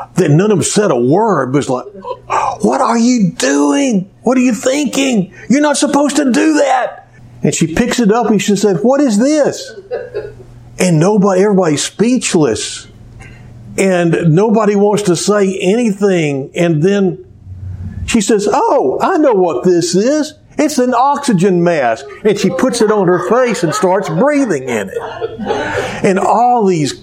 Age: 50-69